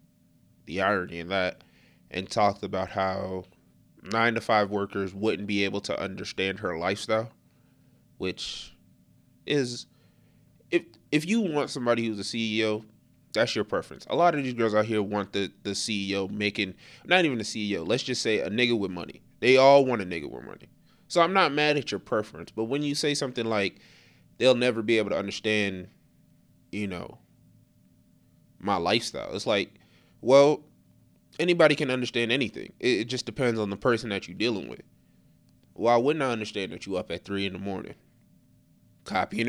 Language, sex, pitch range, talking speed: English, male, 100-125 Hz, 175 wpm